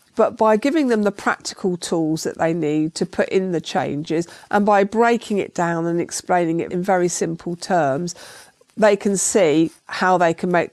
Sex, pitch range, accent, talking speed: female, 165-195 Hz, British, 190 wpm